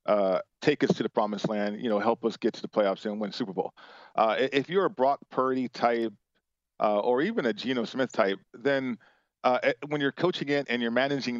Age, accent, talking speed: 40-59, American, 220 wpm